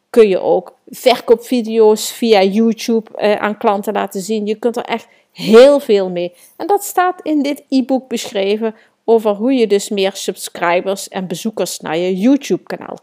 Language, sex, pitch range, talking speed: Dutch, female, 195-270 Hz, 165 wpm